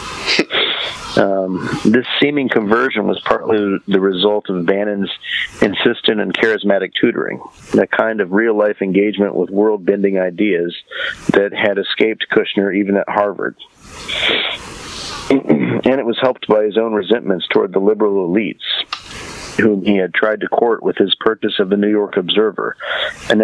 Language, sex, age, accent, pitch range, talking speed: English, male, 50-69, American, 100-110 Hz, 145 wpm